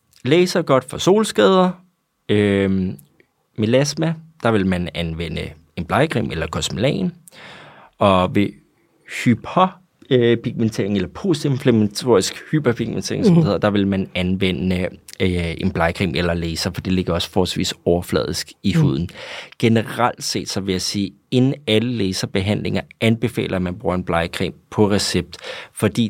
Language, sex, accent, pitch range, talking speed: Danish, male, native, 95-125 Hz, 130 wpm